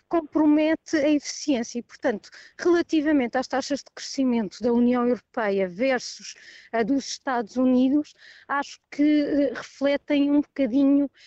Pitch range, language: 225-275 Hz, Portuguese